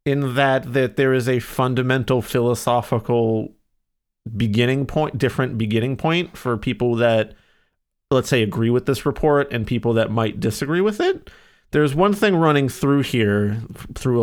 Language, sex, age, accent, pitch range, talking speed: English, male, 30-49, American, 115-160 Hz, 150 wpm